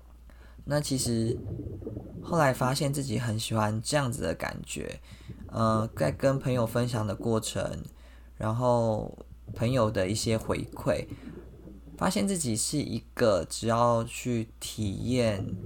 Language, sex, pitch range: Chinese, male, 105-120 Hz